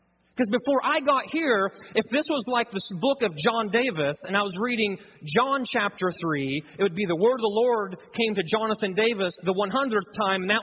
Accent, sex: American, male